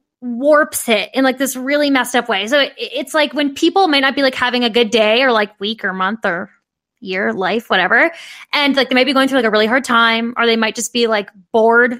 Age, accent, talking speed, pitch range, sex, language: 10-29, American, 255 wpm, 220-275 Hz, female, English